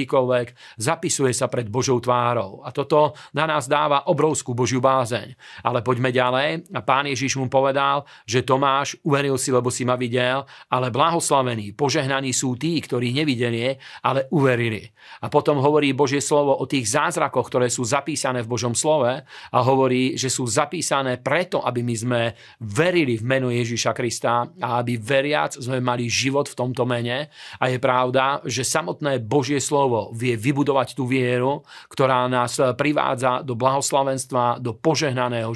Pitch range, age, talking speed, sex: 125-140 Hz, 40-59, 155 wpm, male